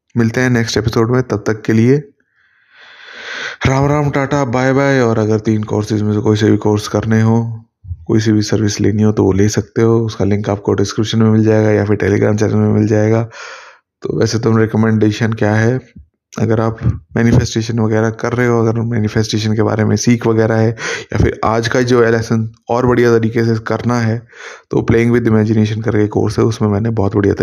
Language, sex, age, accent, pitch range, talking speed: Hindi, male, 20-39, native, 105-120 Hz, 210 wpm